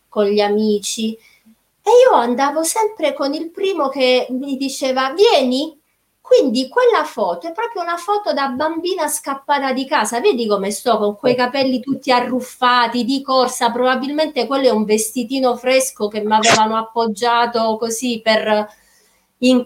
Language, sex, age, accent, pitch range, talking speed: Italian, female, 30-49, native, 215-275 Hz, 145 wpm